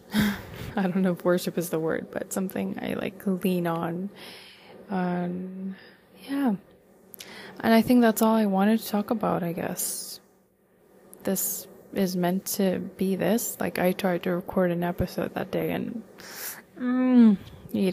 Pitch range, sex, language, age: 175-200 Hz, female, English, 20-39